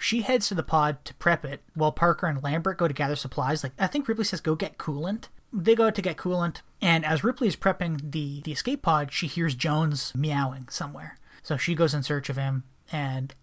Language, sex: English, male